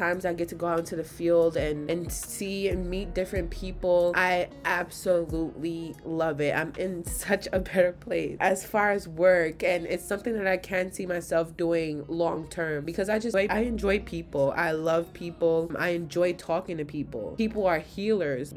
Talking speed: 185 wpm